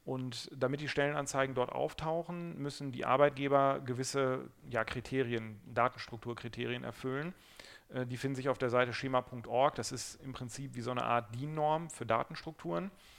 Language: German